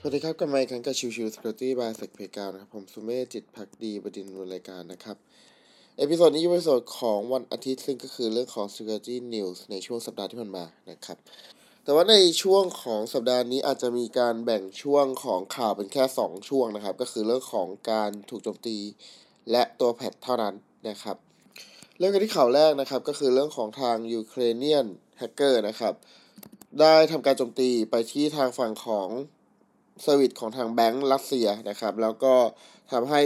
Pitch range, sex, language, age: 115-145 Hz, male, Thai, 20-39